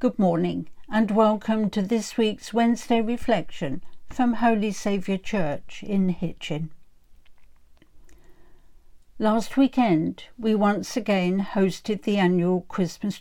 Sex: female